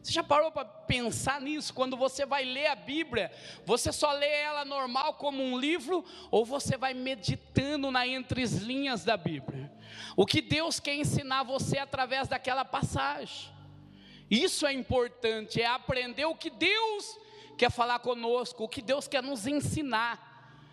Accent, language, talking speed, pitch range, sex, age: Brazilian, Portuguese, 160 wpm, 225-300 Hz, male, 20-39